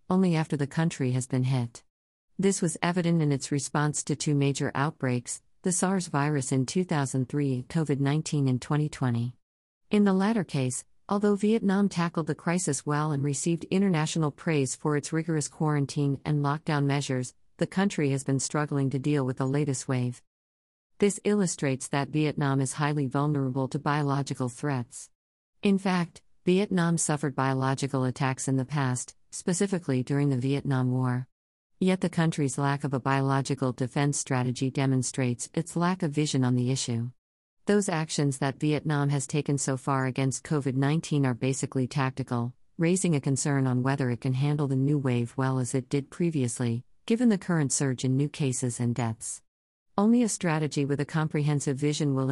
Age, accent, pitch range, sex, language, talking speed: 50-69, American, 130-155 Hz, female, English, 165 wpm